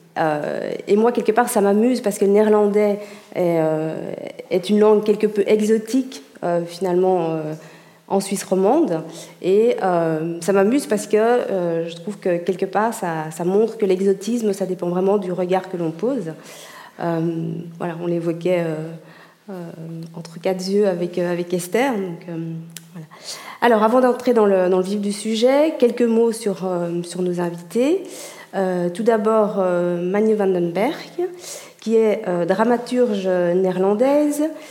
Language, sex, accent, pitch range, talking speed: French, female, French, 180-225 Hz, 165 wpm